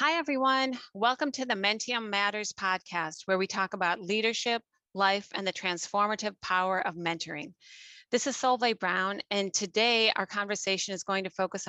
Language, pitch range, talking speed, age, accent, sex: English, 180-210 Hz, 165 wpm, 40-59, American, female